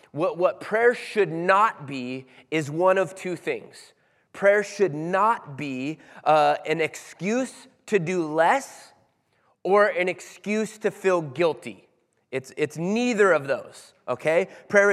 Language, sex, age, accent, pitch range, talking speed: English, male, 20-39, American, 165-210 Hz, 135 wpm